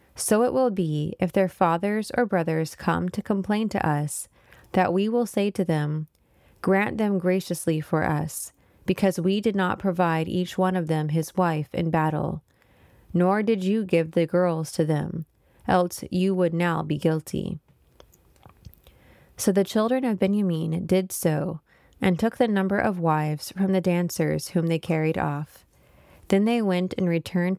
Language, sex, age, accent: English, female, 20-39, American